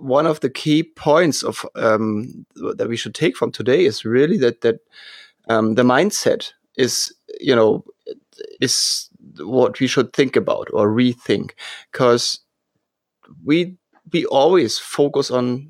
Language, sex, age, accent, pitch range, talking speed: English, male, 30-49, German, 120-155 Hz, 140 wpm